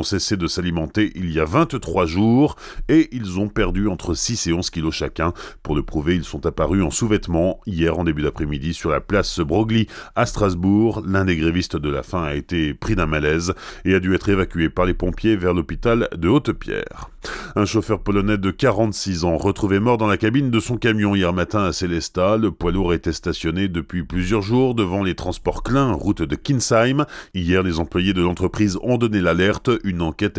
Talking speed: 205 wpm